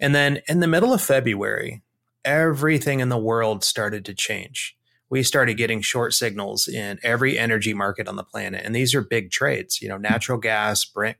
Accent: American